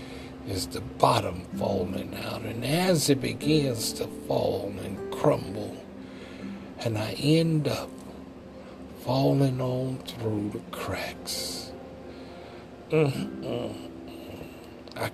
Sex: male